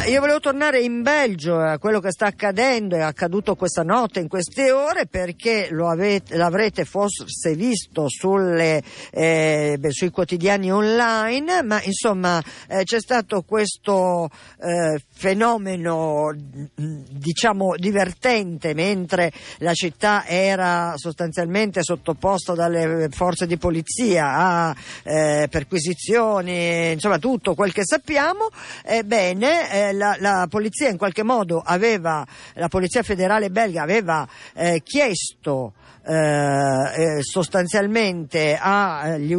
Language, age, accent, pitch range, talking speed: Italian, 50-69, native, 165-210 Hz, 120 wpm